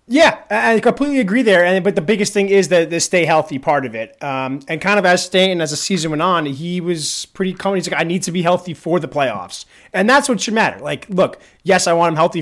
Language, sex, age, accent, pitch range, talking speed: English, male, 30-49, American, 150-195 Hz, 265 wpm